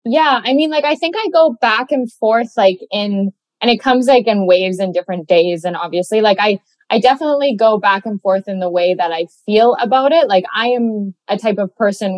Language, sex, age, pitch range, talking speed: English, female, 10-29, 180-225 Hz, 230 wpm